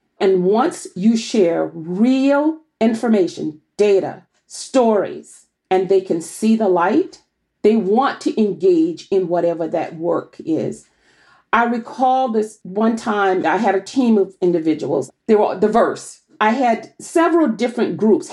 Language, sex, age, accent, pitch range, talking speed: English, female, 40-59, American, 190-260 Hz, 140 wpm